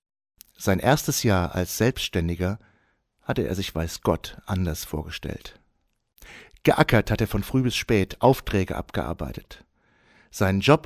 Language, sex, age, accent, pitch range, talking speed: German, male, 60-79, German, 90-120 Hz, 125 wpm